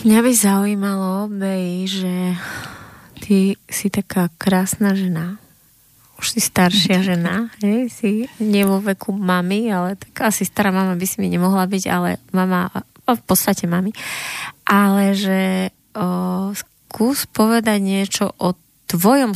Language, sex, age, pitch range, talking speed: Slovak, female, 20-39, 180-205 Hz, 130 wpm